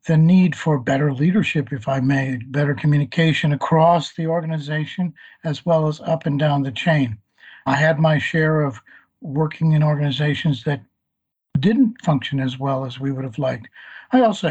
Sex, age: male, 60-79